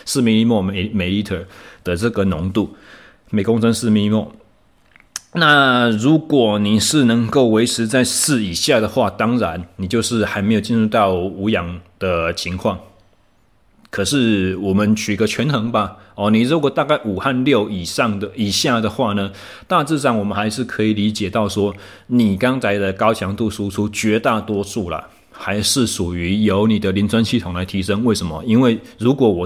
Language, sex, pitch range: Chinese, male, 95-115 Hz